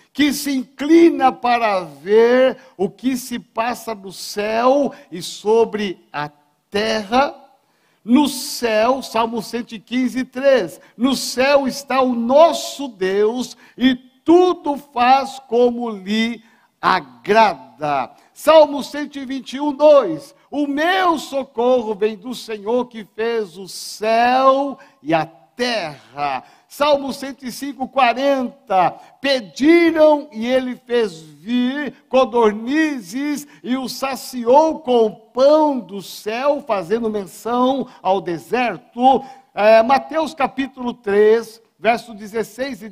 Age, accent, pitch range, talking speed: 60-79, Brazilian, 220-270 Hz, 105 wpm